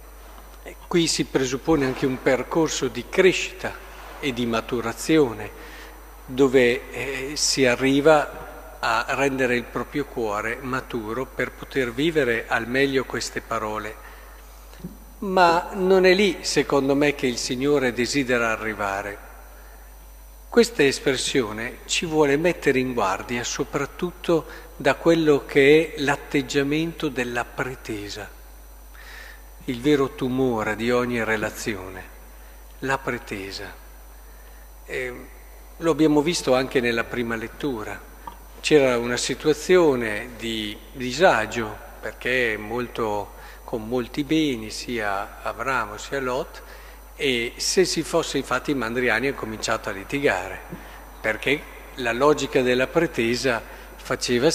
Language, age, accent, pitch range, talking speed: Italian, 50-69, native, 115-150 Hz, 110 wpm